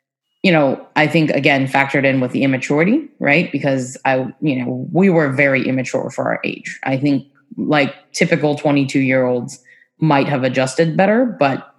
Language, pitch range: English, 130-150 Hz